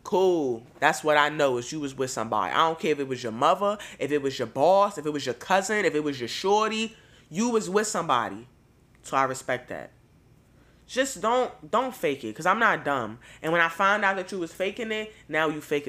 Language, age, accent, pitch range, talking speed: English, 20-39, American, 150-225 Hz, 240 wpm